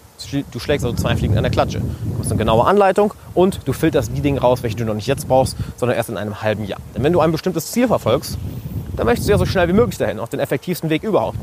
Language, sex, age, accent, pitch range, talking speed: German, male, 30-49, German, 115-155 Hz, 275 wpm